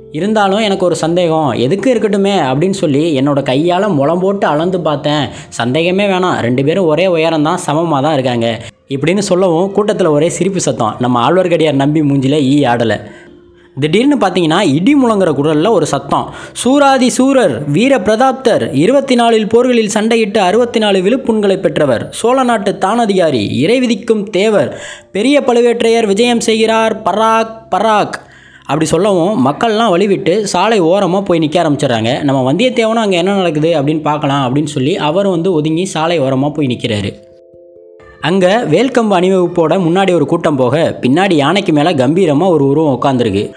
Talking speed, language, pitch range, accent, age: 140 wpm, Tamil, 145-215 Hz, native, 20-39